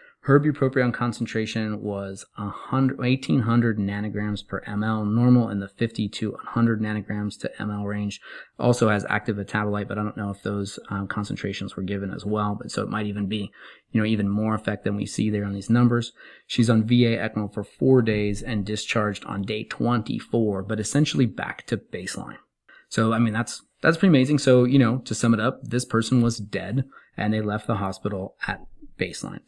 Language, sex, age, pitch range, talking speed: English, male, 30-49, 105-120 Hz, 190 wpm